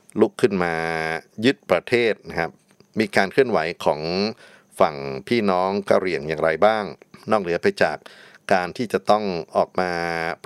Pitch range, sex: 85-110 Hz, male